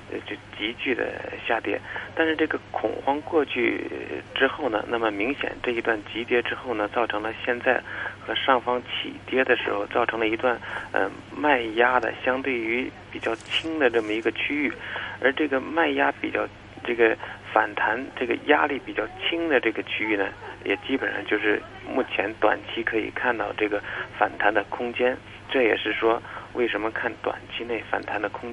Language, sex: Chinese, male